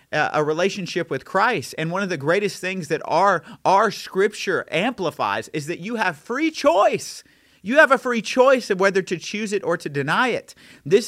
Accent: American